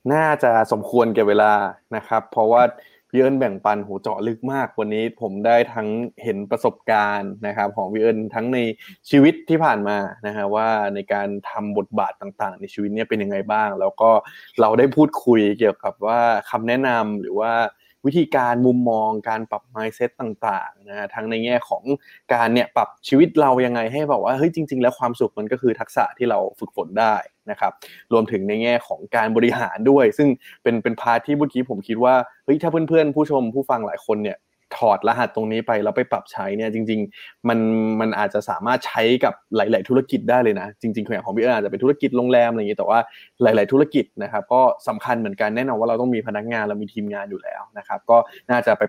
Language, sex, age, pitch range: Thai, male, 20-39, 110-130 Hz